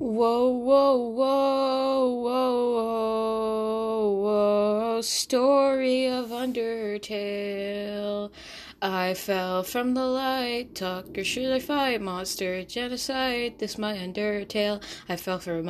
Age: 10-29